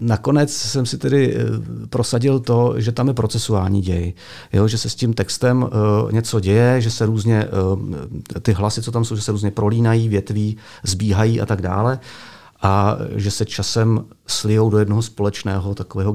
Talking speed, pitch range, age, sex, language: 170 wpm, 100-115 Hz, 40-59, male, Czech